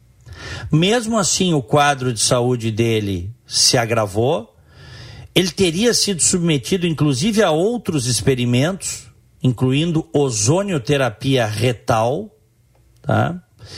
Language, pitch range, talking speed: Portuguese, 120-160 Hz, 85 wpm